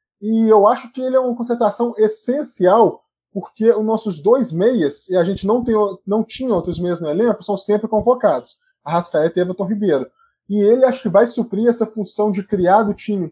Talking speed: 195 wpm